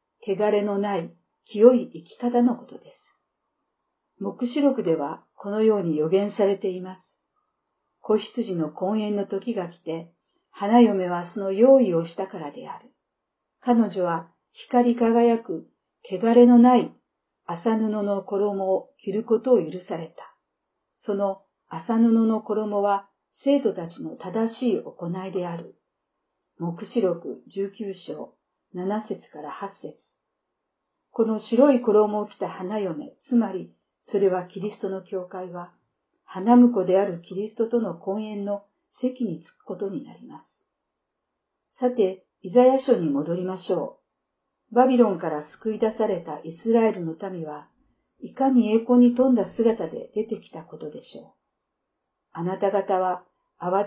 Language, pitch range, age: Japanese, 185-230 Hz, 50-69